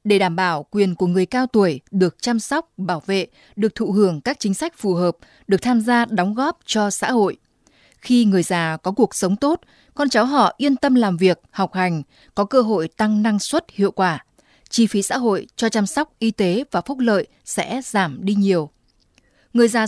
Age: 20-39